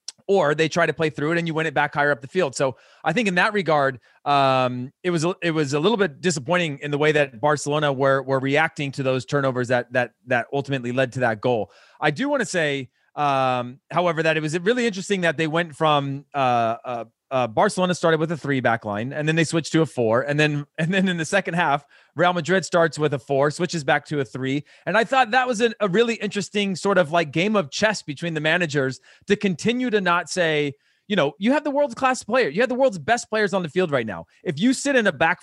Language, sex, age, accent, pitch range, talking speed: English, male, 30-49, American, 140-195 Hz, 255 wpm